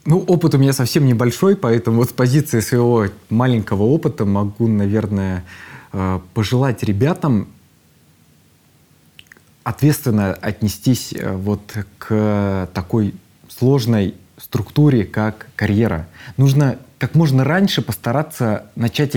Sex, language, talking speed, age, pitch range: male, Russian, 100 wpm, 20-39, 105-140 Hz